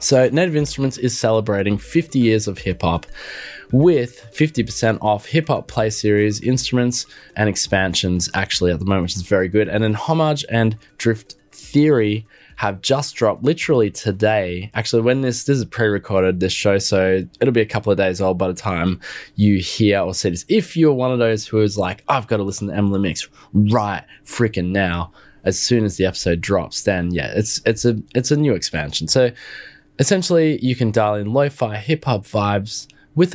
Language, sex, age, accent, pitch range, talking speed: English, male, 20-39, Australian, 100-130 Hz, 185 wpm